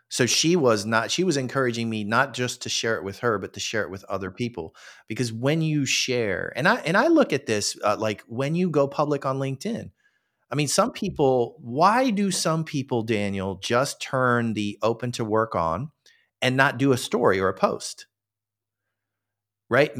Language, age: English, 40-59